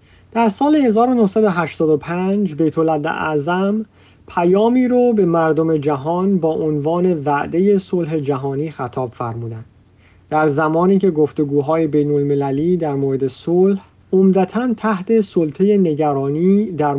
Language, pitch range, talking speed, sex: Persian, 145-200 Hz, 100 wpm, male